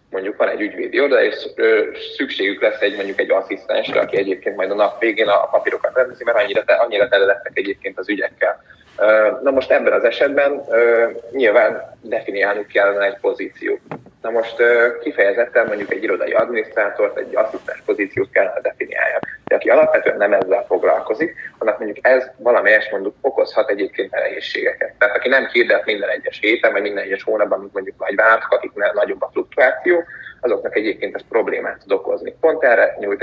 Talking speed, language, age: 160 wpm, Hungarian, 30-49